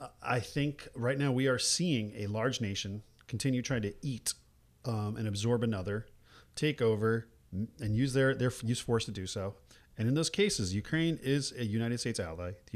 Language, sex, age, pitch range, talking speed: English, male, 40-59, 90-125 Hz, 190 wpm